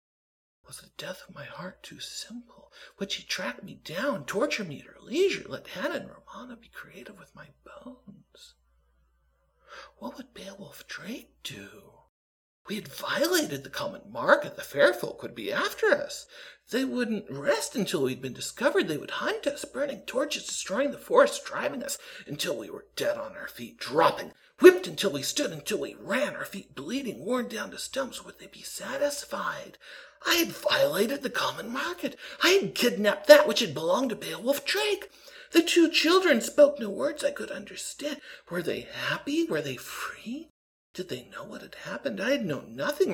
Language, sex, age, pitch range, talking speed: English, male, 50-69, 195-295 Hz, 180 wpm